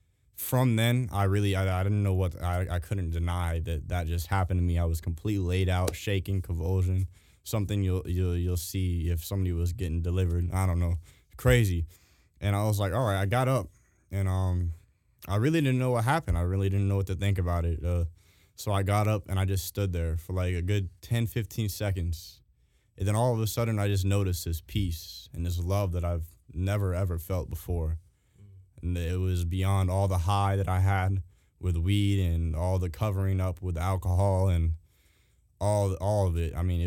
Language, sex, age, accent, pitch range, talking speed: English, male, 20-39, American, 85-100 Hz, 210 wpm